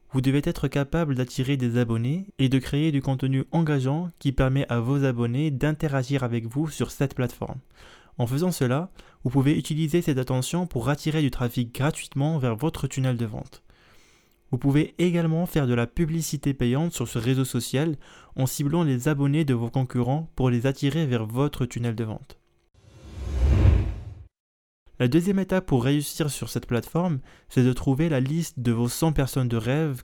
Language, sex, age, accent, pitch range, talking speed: French, male, 20-39, French, 125-155 Hz, 175 wpm